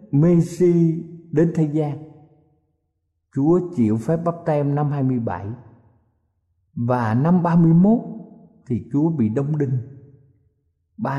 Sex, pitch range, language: male, 115-180 Hz, Thai